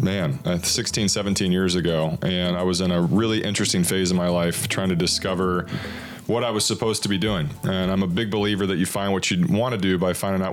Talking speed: 240 wpm